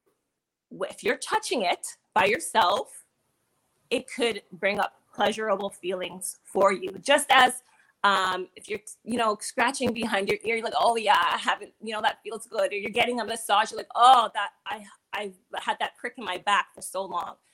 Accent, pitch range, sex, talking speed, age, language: American, 205-275 Hz, female, 190 wpm, 20-39, English